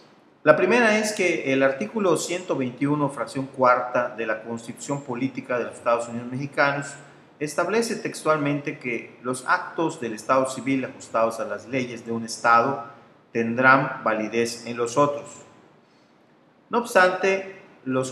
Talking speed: 135 wpm